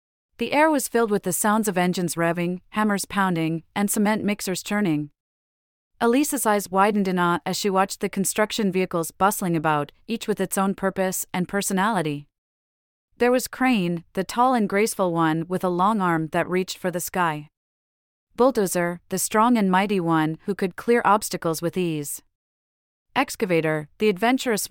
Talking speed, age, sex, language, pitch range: 165 wpm, 30-49, female, English, 160-210 Hz